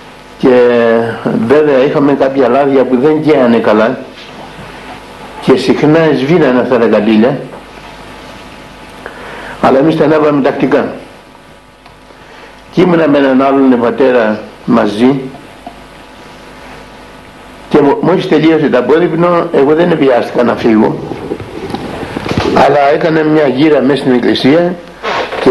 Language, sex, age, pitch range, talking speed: Greek, male, 60-79, 130-160 Hz, 105 wpm